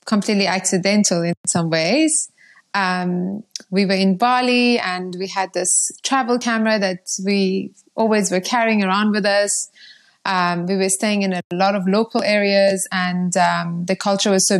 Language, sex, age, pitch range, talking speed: English, female, 20-39, 185-210 Hz, 165 wpm